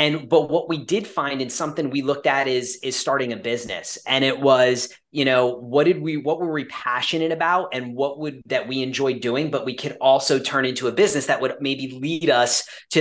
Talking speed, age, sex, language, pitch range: 230 wpm, 30-49, male, English, 120-140 Hz